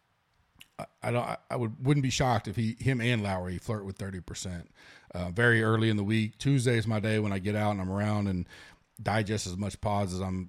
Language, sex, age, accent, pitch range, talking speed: English, male, 40-59, American, 105-130 Hz, 225 wpm